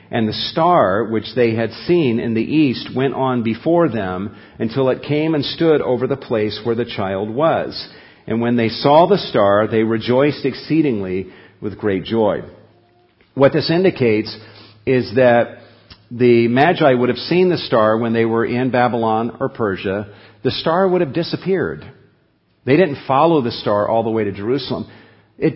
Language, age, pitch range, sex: English, 50-69, 115-165 Hz, male